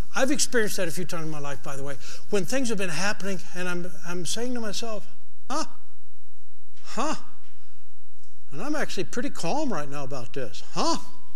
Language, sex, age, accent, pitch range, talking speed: English, male, 60-79, American, 175-255 Hz, 185 wpm